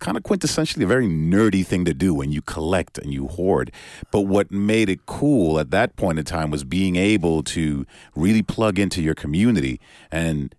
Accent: American